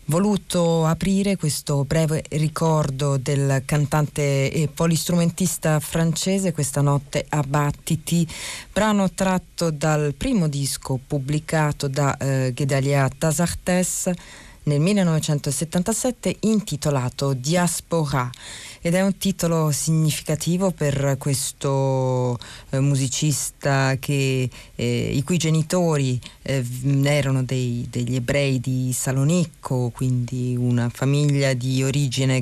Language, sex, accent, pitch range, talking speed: Italian, female, native, 135-165 Hz, 100 wpm